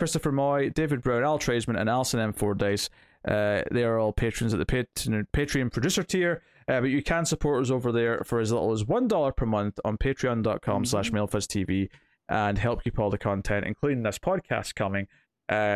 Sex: male